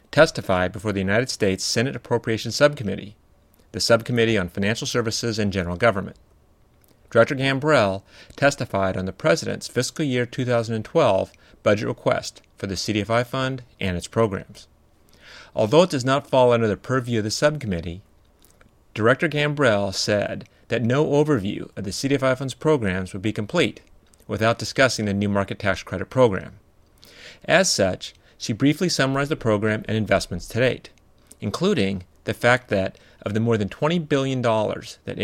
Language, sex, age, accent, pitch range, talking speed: English, male, 40-59, American, 95-130 Hz, 150 wpm